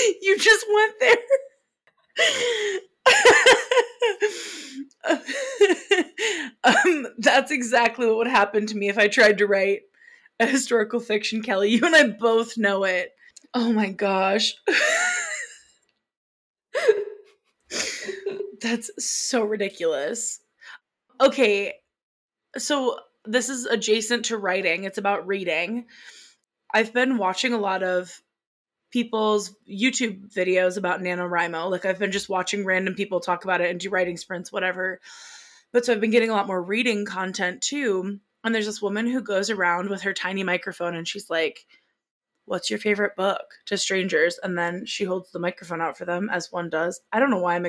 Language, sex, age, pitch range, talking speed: English, female, 20-39, 190-275 Hz, 145 wpm